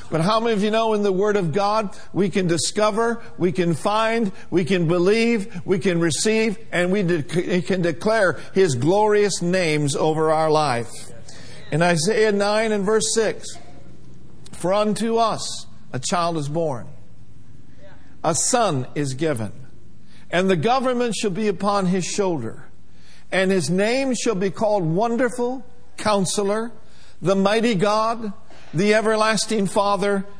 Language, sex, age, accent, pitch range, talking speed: English, male, 60-79, American, 165-215 Hz, 140 wpm